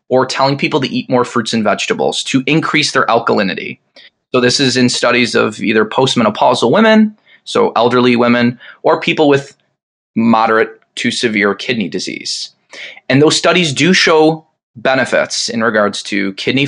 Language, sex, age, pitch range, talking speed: English, male, 20-39, 115-160 Hz, 155 wpm